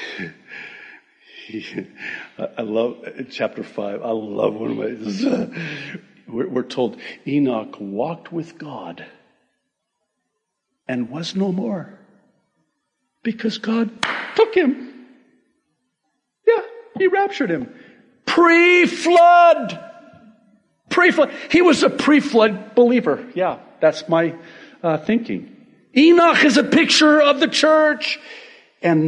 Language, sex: English, male